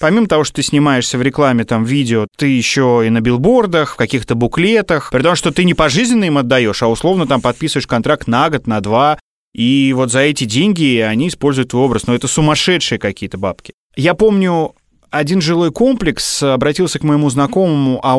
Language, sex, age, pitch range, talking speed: Russian, male, 30-49, 110-150 Hz, 190 wpm